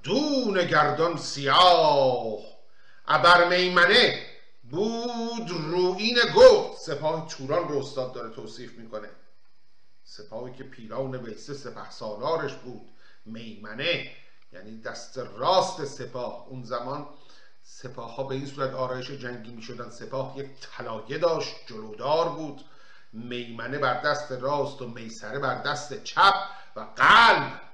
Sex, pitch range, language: male, 130-175 Hz, Persian